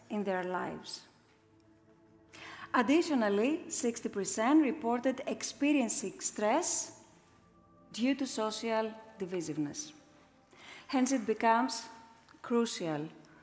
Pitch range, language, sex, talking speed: 195-260 Hz, Greek, female, 70 wpm